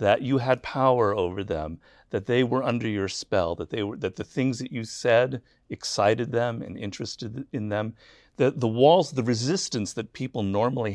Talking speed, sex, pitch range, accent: 190 wpm, male, 105-145 Hz, American